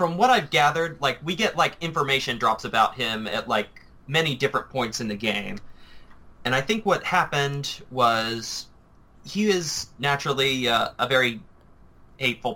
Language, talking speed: English, 160 wpm